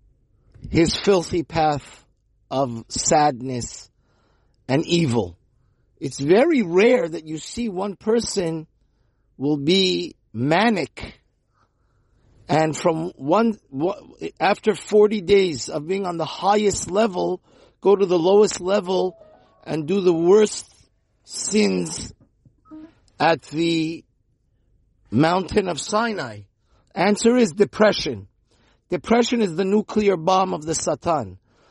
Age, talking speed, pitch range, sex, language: 50-69, 105 wpm, 145-210 Hz, male, English